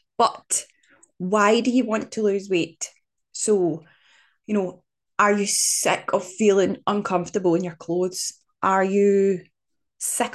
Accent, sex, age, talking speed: British, female, 10-29, 135 wpm